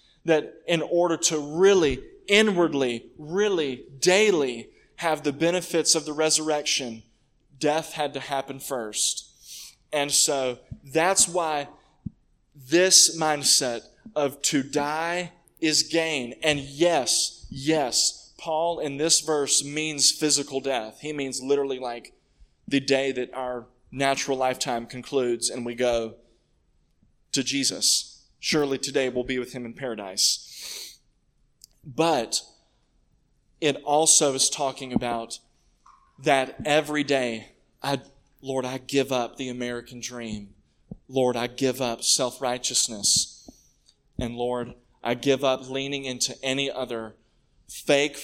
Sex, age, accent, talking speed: male, 20-39, American, 120 wpm